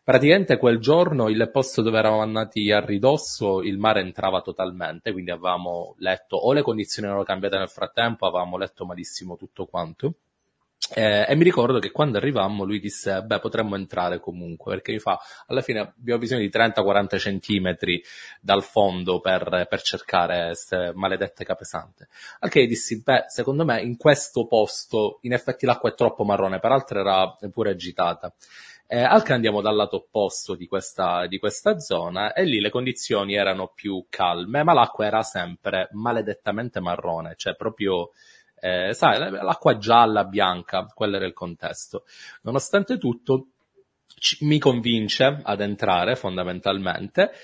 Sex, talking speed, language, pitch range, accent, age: male, 155 wpm, Italian, 95-125 Hz, native, 20-39